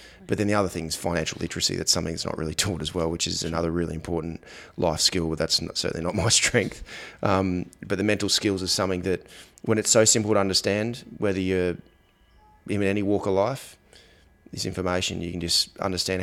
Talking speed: 210 wpm